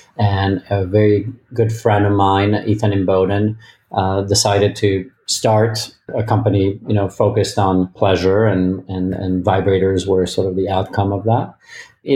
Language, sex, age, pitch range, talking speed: English, male, 40-59, 100-115 Hz, 165 wpm